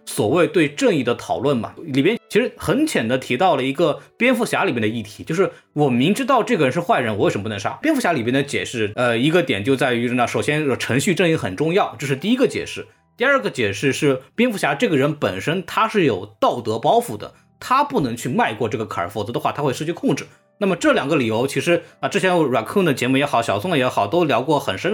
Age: 20-39